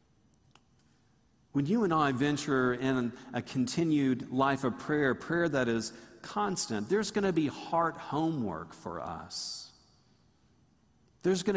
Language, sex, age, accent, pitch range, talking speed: English, male, 50-69, American, 125-170 Hz, 130 wpm